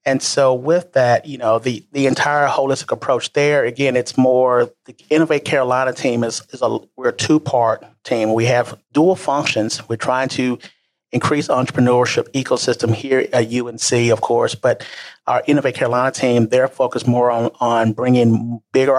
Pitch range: 120-135 Hz